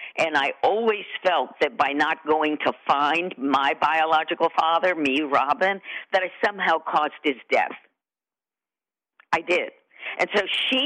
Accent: American